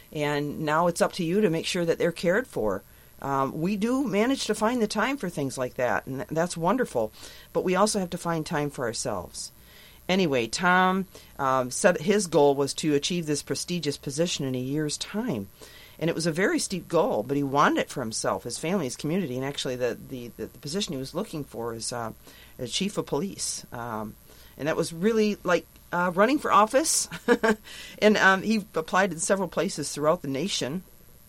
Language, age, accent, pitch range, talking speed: English, 40-59, American, 145-200 Hz, 200 wpm